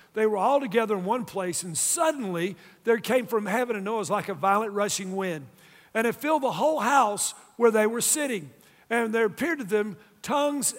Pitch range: 195-255 Hz